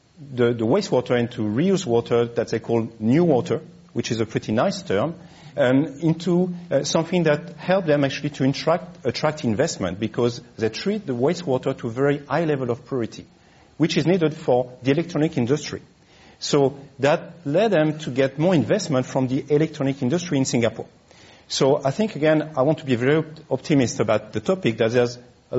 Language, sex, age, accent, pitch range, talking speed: English, male, 50-69, French, 115-150 Hz, 185 wpm